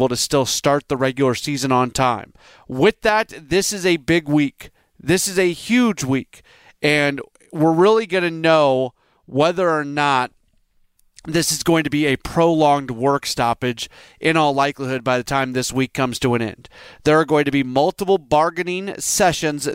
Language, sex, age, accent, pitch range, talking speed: English, male, 30-49, American, 135-165 Hz, 175 wpm